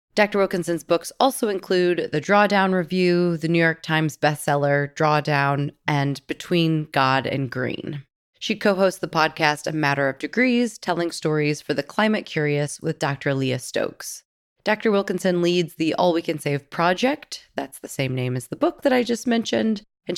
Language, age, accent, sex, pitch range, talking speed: English, 20-39, American, female, 150-190 Hz, 170 wpm